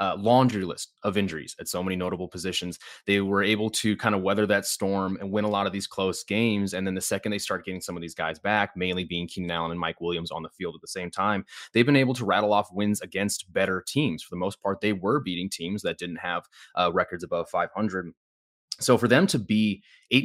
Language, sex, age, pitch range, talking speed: English, male, 20-39, 90-110 Hz, 250 wpm